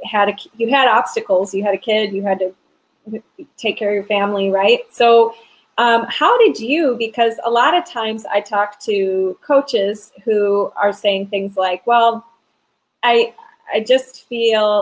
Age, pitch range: 20-39, 200-260 Hz